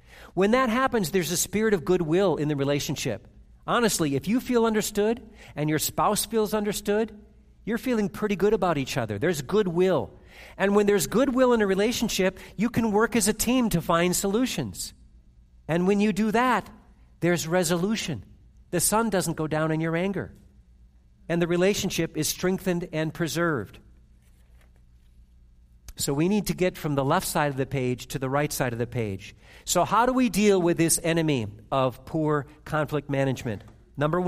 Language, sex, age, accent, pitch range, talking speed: English, male, 50-69, American, 120-190 Hz, 175 wpm